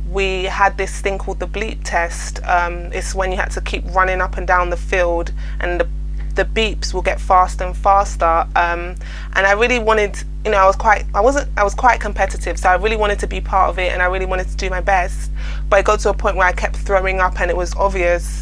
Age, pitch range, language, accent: 20-39, 175-195 Hz, English, British